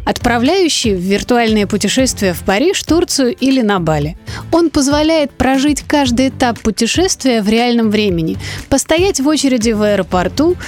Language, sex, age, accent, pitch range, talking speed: Russian, female, 30-49, native, 215-315 Hz, 135 wpm